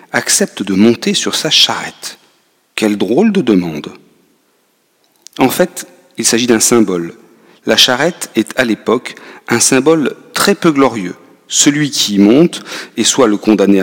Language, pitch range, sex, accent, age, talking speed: French, 100-125 Hz, male, French, 40-59, 150 wpm